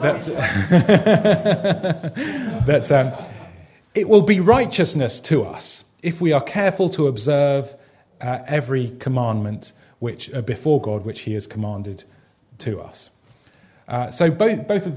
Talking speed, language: 130 wpm, Danish